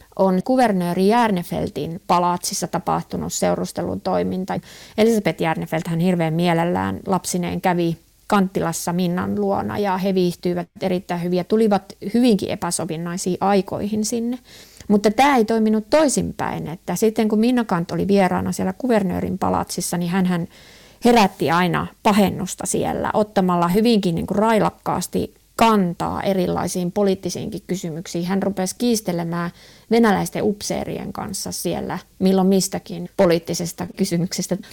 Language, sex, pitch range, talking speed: Finnish, female, 175-215 Hz, 115 wpm